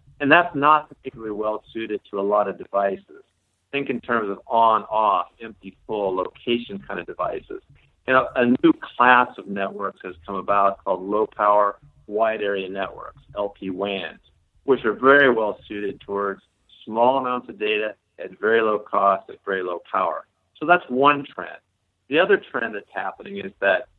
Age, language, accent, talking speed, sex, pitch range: 50-69, English, American, 165 wpm, male, 105-140 Hz